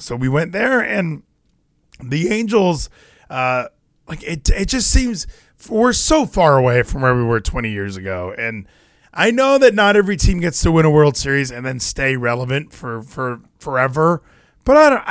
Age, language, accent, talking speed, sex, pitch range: 20-39, English, American, 185 wpm, male, 125-185 Hz